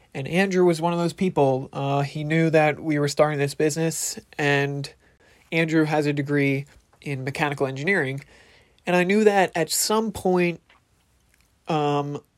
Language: English